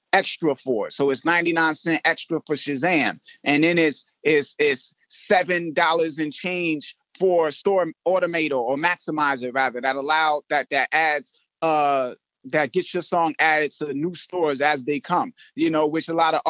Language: English